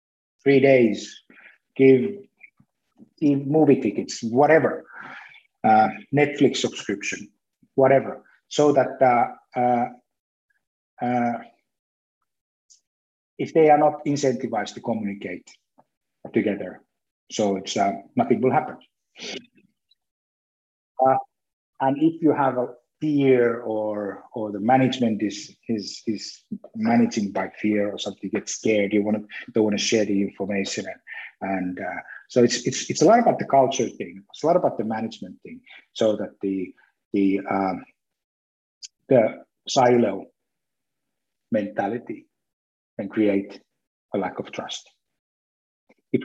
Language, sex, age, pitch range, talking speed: Finnish, male, 50-69, 100-140 Hz, 125 wpm